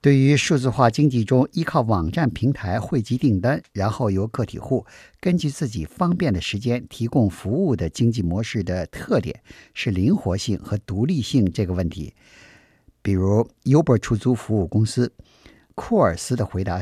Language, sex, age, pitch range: Chinese, male, 50-69, 100-130 Hz